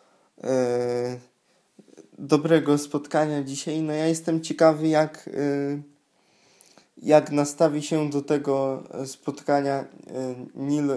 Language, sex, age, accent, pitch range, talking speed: Polish, male, 20-39, native, 135-155 Hz, 80 wpm